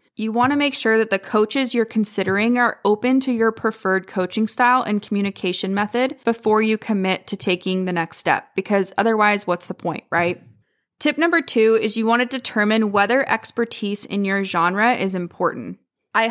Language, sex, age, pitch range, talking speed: English, female, 20-39, 190-240 Hz, 185 wpm